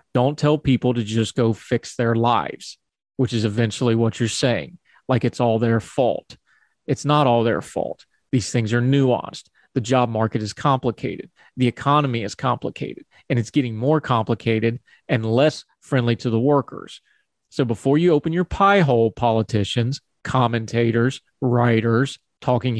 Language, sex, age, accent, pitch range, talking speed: English, male, 30-49, American, 115-140 Hz, 160 wpm